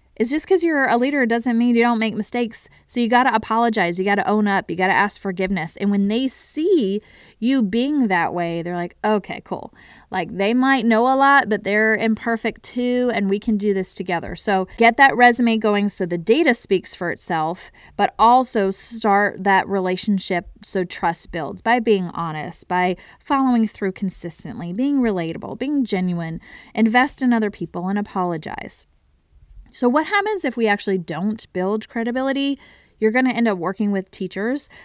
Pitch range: 185-235 Hz